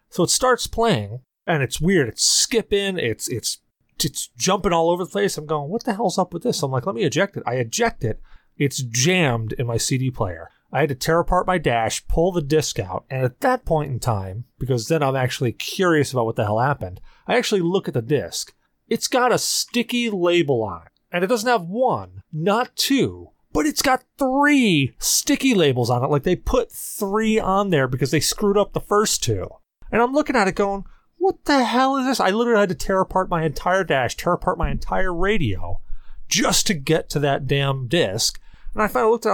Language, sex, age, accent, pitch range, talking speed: English, male, 30-49, American, 135-205 Hz, 225 wpm